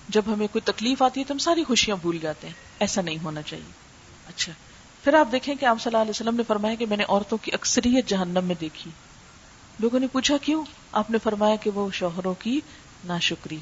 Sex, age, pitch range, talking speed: female, 40-59, 195-250 Hz, 220 wpm